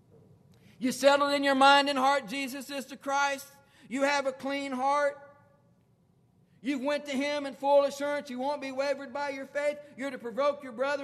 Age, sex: 50-69, male